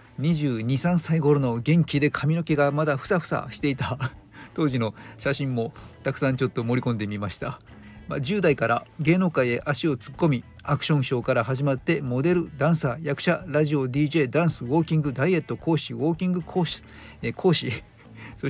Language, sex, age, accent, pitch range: Japanese, male, 40-59, native, 120-155 Hz